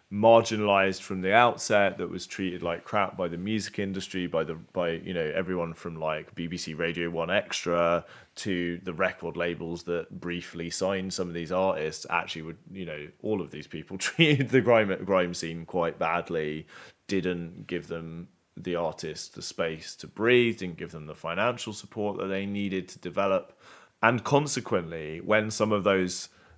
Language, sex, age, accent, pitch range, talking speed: English, male, 20-39, British, 85-100 Hz, 175 wpm